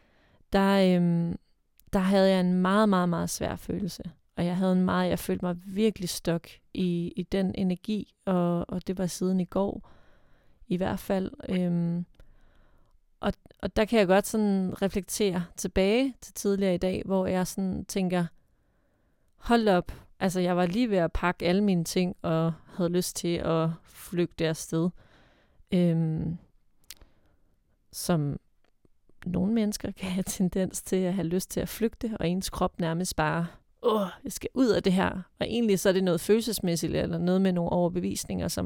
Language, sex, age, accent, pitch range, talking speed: Danish, female, 30-49, native, 170-195 Hz, 175 wpm